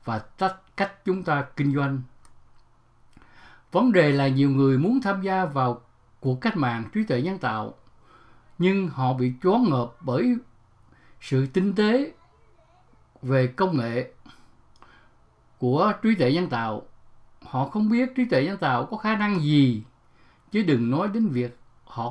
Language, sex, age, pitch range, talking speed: English, male, 60-79, 125-190 Hz, 150 wpm